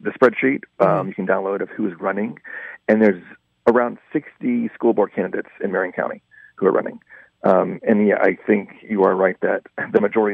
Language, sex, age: English, male, 40-59